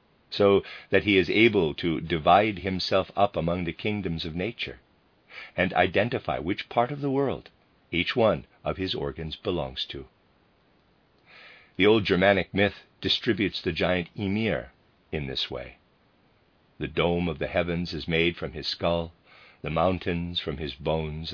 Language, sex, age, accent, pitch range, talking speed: English, male, 50-69, American, 80-100 Hz, 150 wpm